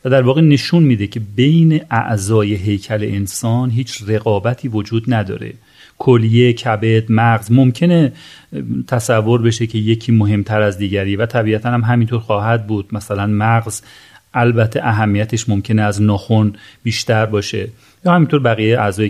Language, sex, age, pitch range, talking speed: Persian, male, 40-59, 110-130 Hz, 140 wpm